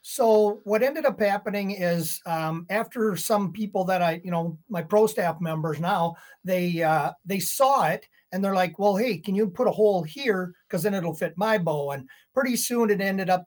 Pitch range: 175-220 Hz